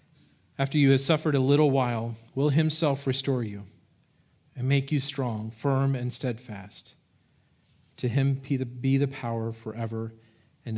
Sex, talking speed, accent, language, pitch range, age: male, 140 wpm, American, English, 120-140 Hz, 40-59